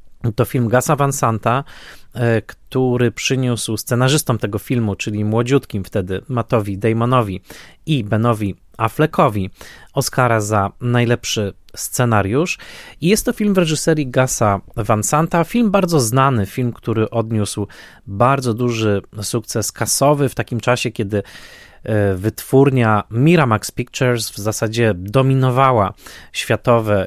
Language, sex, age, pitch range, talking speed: Polish, male, 20-39, 105-130 Hz, 110 wpm